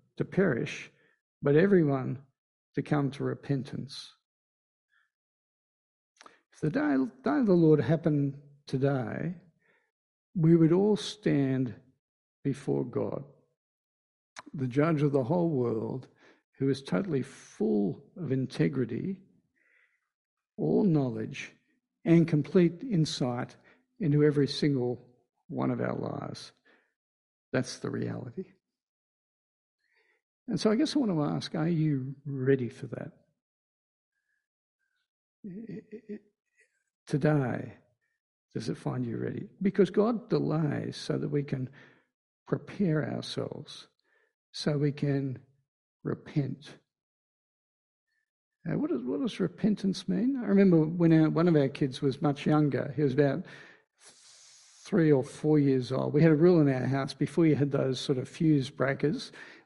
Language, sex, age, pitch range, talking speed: English, male, 60-79, 135-195 Hz, 120 wpm